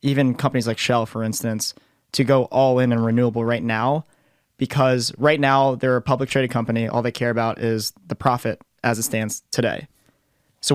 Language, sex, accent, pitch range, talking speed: English, male, American, 115-135 Hz, 185 wpm